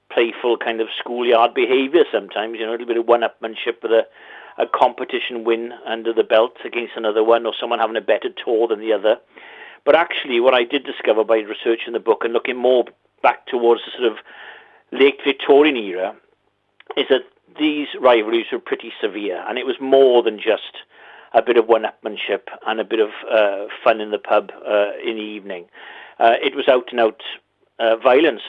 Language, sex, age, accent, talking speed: English, male, 50-69, British, 195 wpm